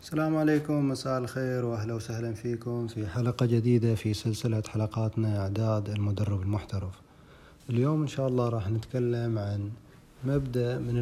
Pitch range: 110-130 Hz